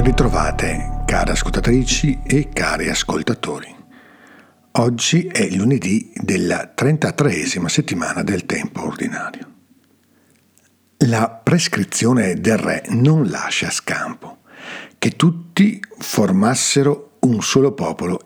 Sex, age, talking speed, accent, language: male, 50-69, 90 wpm, native, Italian